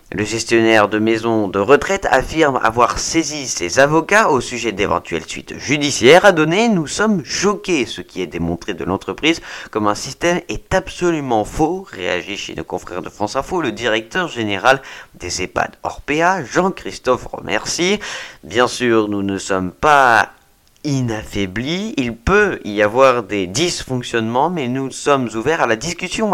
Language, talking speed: French, 160 wpm